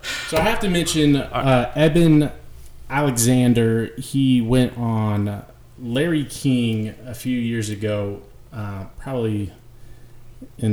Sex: male